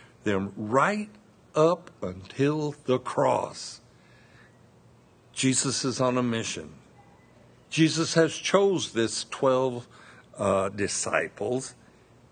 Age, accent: 60-79, American